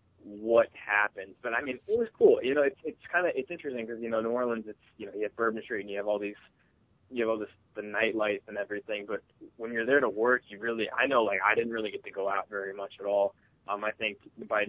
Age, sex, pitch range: 20-39, male, 100-120 Hz